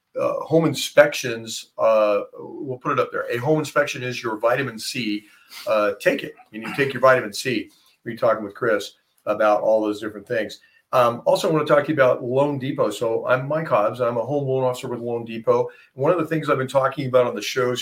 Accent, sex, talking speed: American, male, 225 wpm